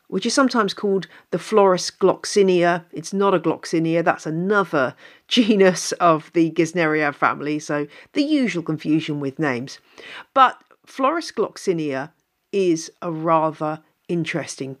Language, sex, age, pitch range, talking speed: English, female, 40-59, 165-235 Hz, 125 wpm